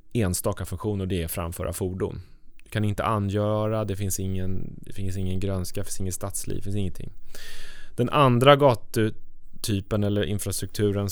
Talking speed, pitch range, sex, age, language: 160 wpm, 95-125 Hz, male, 20-39, Swedish